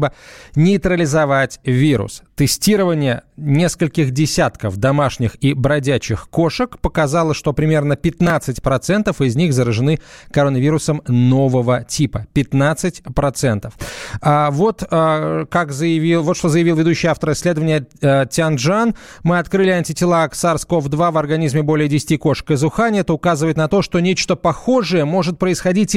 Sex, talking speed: male, 125 wpm